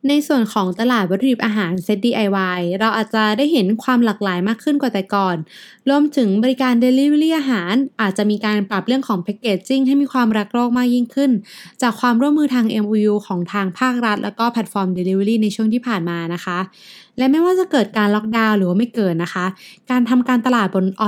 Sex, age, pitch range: female, 20-39, 195-250 Hz